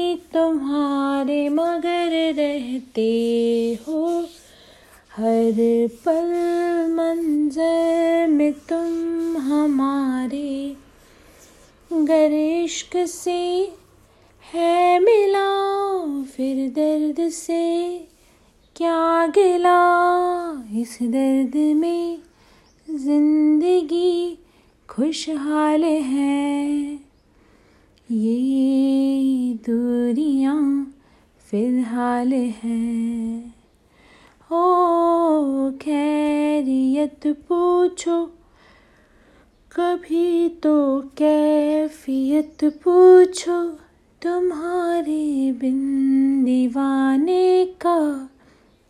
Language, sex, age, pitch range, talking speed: Hindi, female, 30-49, 270-340 Hz, 50 wpm